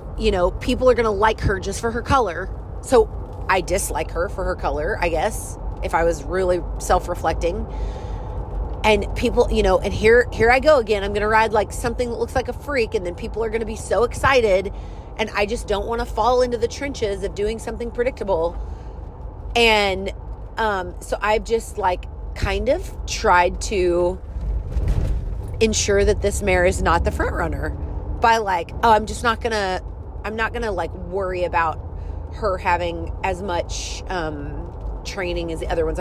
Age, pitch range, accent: 30-49, 170-235 Hz, American